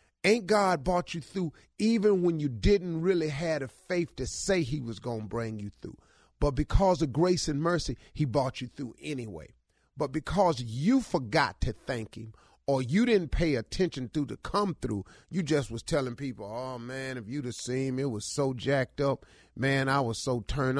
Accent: American